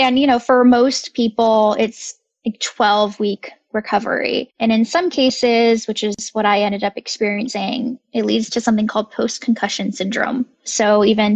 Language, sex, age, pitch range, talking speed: English, female, 10-29, 215-255 Hz, 160 wpm